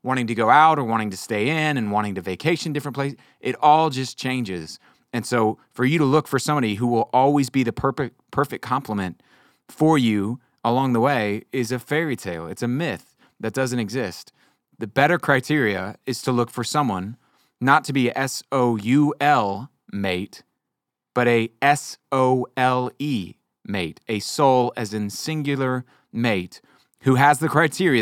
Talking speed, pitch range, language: 165 wpm, 115-145 Hz, English